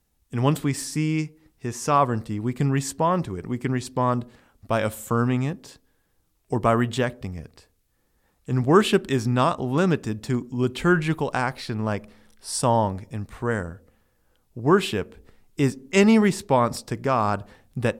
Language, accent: English, American